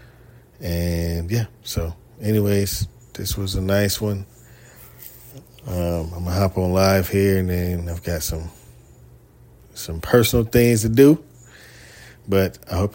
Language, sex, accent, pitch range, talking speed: English, male, American, 85-105 Hz, 140 wpm